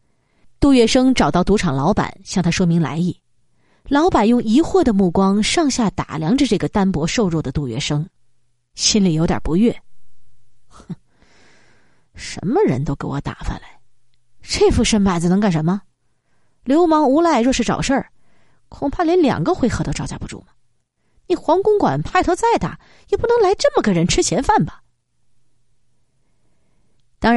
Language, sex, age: Chinese, female, 30-49